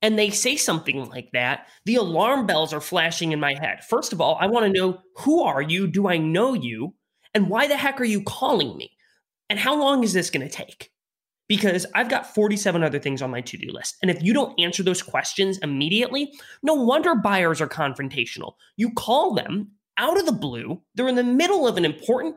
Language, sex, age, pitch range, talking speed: English, male, 20-39, 155-225 Hz, 215 wpm